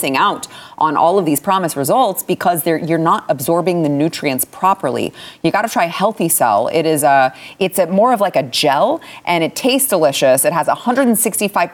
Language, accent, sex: English, American, female